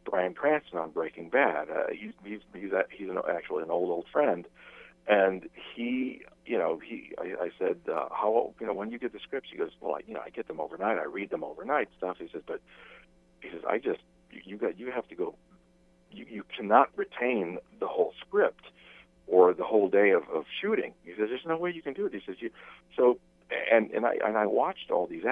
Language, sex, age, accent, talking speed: English, male, 50-69, American, 230 wpm